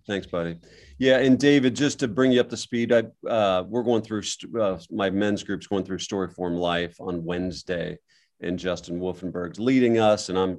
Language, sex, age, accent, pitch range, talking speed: English, male, 40-59, American, 90-110 Hz, 195 wpm